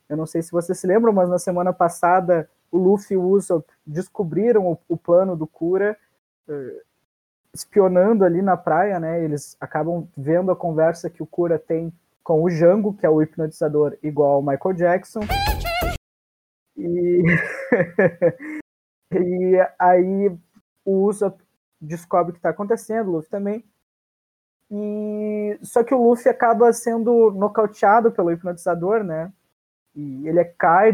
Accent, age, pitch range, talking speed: Brazilian, 20-39, 165-200 Hz, 145 wpm